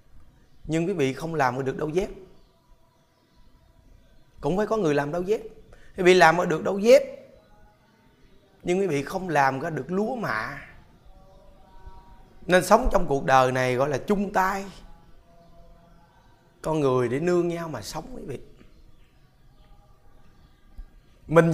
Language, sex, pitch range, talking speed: Vietnamese, male, 130-190 Hz, 135 wpm